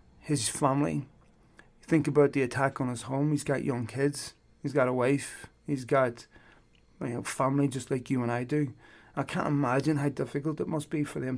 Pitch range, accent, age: 130-145 Hz, British, 30-49